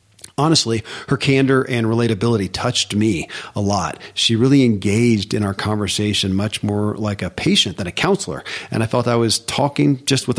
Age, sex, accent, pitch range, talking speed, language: 40-59, male, American, 105-125 Hz, 180 wpm, English